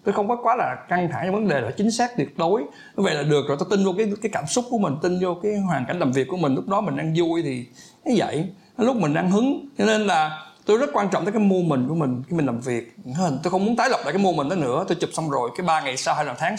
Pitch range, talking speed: 150-210 Hz, 320 wpm